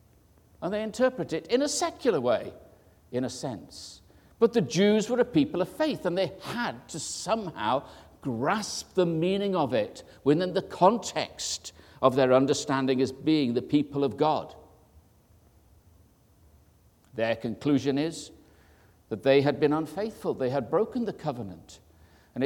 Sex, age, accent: male, 60-79, British